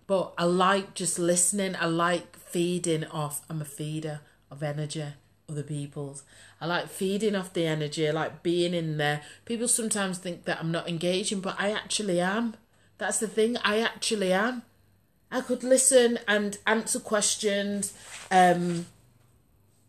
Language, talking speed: English, 155 wpm